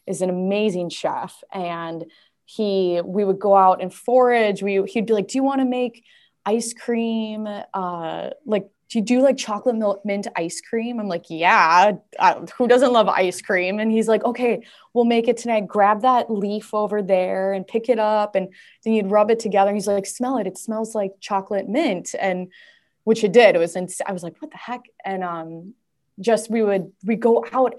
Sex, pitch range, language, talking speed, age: female, 185-230 Hz, English, 200 wpm, 20-39